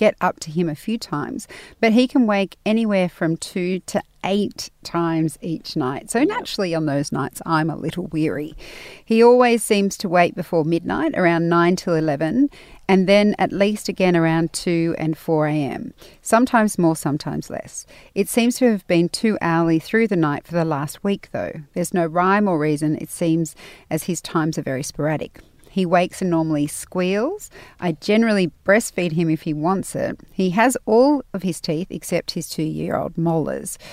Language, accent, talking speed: English, Australian, 185 wpm